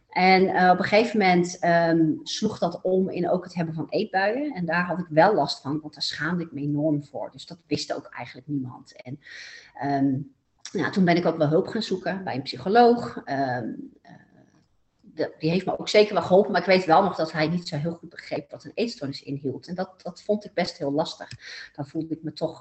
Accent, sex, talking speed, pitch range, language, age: Dutch, female, 225 wpm, 150-190 Hz, Dutch, 40-59